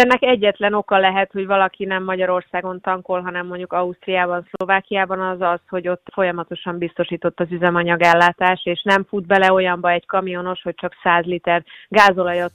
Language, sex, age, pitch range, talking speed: Hungarian, female, 30-49, 175-195 Hz, 160 wpm